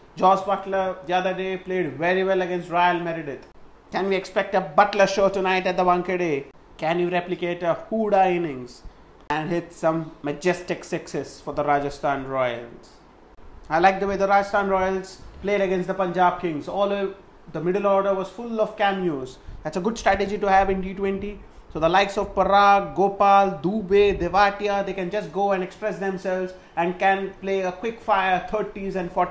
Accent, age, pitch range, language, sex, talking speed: Indian, 30-49, 165-195 Hz, English, male, 180 wpm